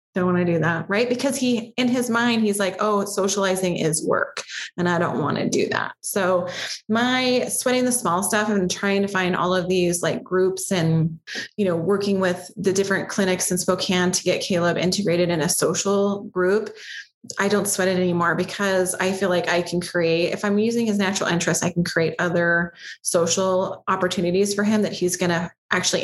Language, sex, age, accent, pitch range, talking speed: English, female, 20-39, American, 175-210 Hz, 205 wpm